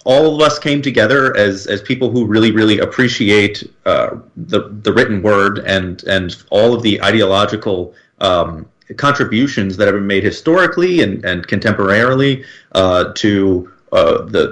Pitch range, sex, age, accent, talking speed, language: 95-120 Hz, male, 30-49, American, 150 wpm, German